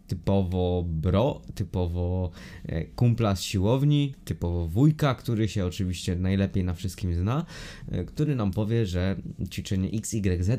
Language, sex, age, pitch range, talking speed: Polish, male, 20-39, 95-130 Hz, 120 wpm